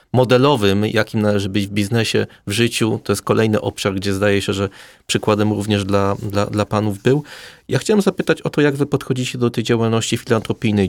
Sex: male